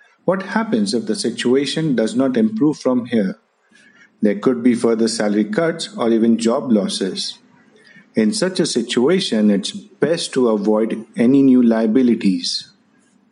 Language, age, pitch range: English, 50-69, 120-195 Hz